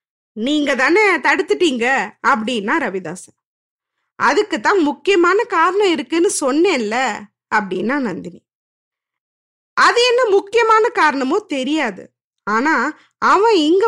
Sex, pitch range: female, 260-390 Hz